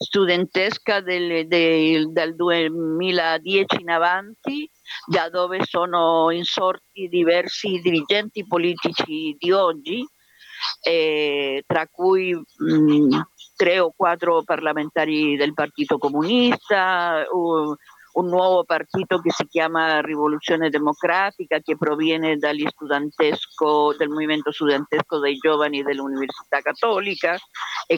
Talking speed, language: 100 wpm, Italian